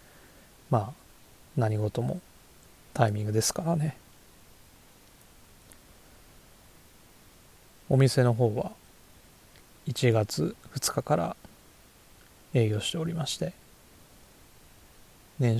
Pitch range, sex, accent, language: 110-155 Hz, male, native, Japanese